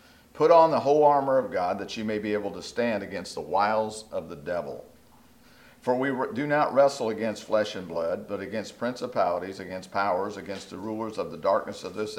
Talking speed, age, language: 205 wpm, 50-69, English